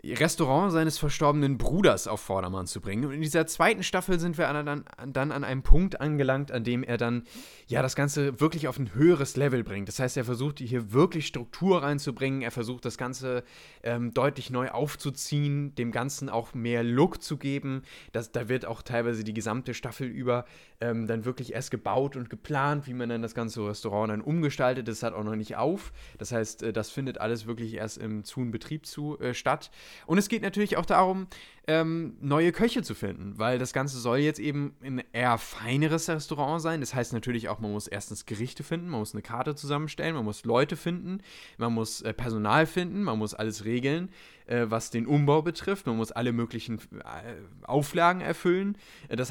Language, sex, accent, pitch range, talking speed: German, male, German, 115-150 Hz, 190 wpm